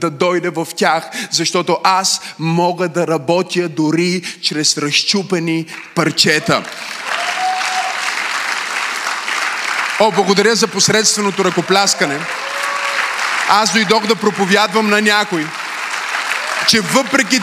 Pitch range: 190-245 Hz